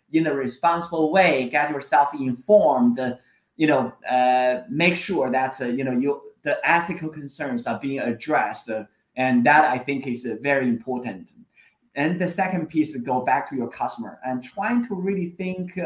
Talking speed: 165 wpm